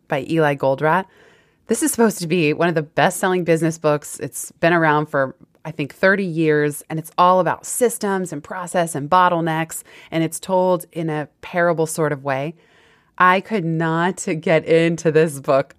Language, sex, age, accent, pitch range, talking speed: English, female, 20-39, American, 150-180 Hz, 180 wpm